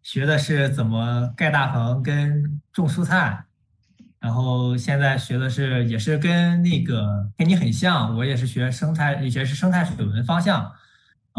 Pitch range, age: 120-160 Hz, 20-39